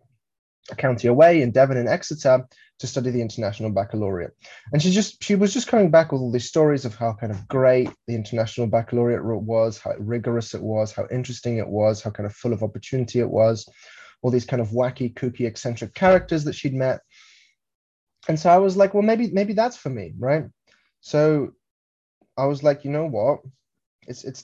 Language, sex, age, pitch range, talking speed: English, male, 10-29, 110-130 Hz, 200 wpm